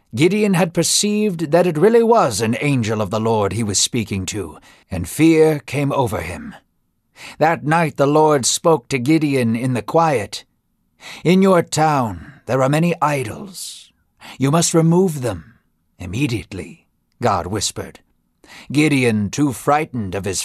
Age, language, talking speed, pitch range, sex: 60-79, English, 145 wpm, 115-155 Hz, male